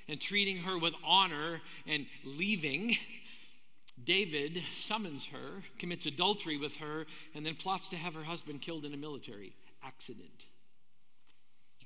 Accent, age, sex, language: American, 50-69, male, English